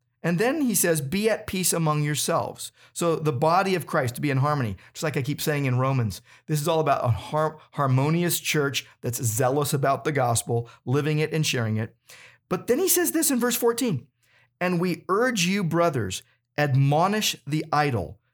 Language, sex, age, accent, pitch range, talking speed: English, male, 50-69, American, 130-165 Hz, 190 wpm